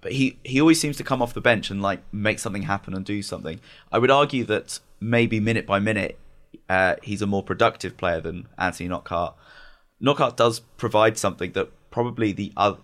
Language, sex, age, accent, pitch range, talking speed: English, male, 20-39, British, 90-110 Hz, 200 wpm